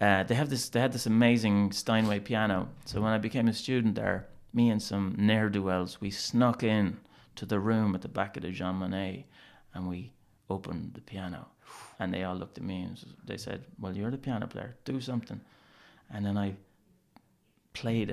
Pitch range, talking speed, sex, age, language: 95-120 Hz, 195 wpm, male, 30-49, English